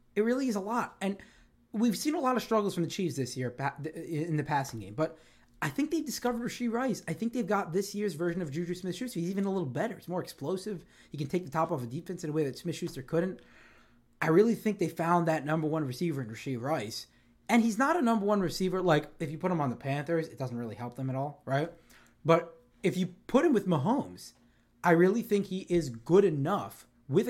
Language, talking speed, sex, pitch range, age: English, 245 wpm, male, 130-180 Hz, 20-39